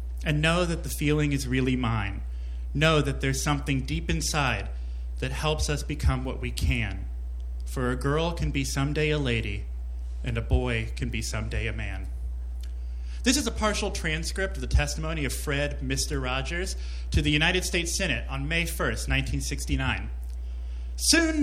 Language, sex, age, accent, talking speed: English, male, 30-49, American, 165 wpm